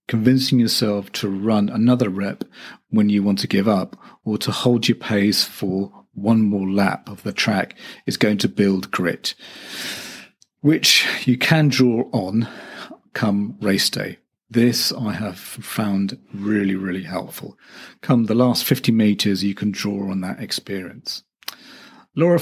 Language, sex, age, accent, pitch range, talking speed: English, male, 40-59, British, 100-125 Hz, 150 wpm